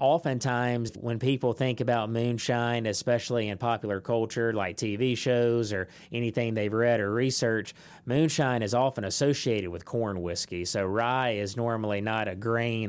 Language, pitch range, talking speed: English, 105-120 Hz, 155 wpm